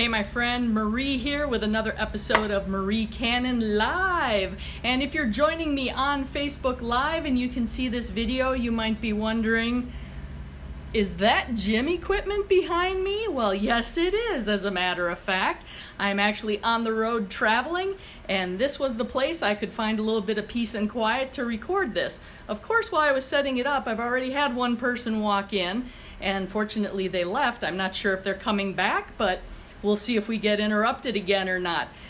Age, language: 40-59, English